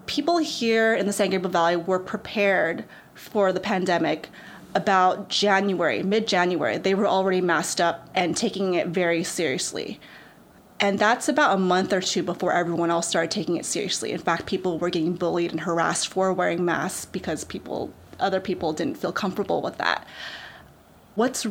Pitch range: 180-215 Hz